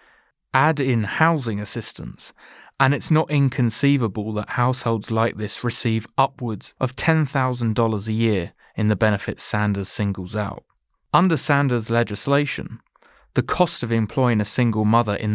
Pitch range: 105-130 Hz